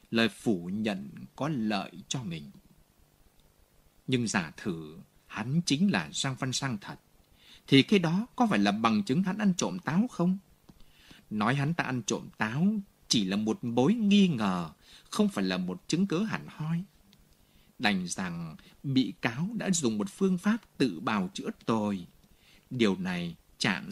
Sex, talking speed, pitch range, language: male, 165 wpm, 125-195 Hz, Vietnamese